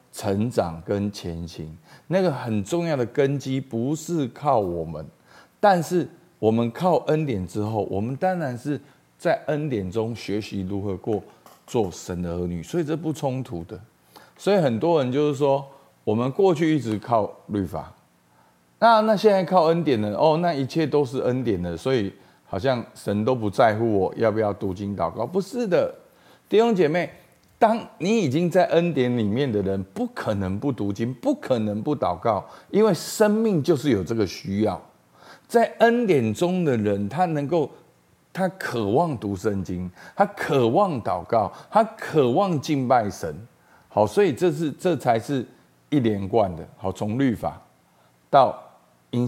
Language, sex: Chinese, male